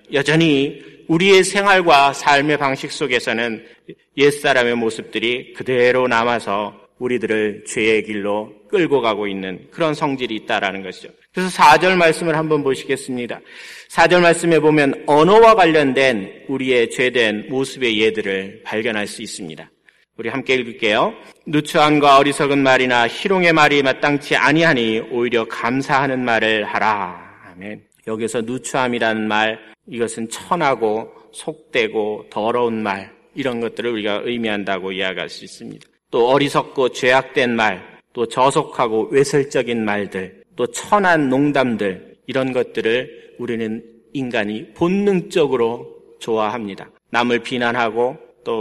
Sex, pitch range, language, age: male, 110-150 Hz, Korean, 40-59